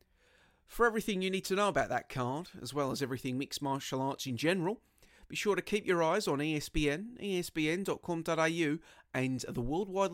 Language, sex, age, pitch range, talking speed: English, male, 30-49, 135-180 Hz, 185 wpm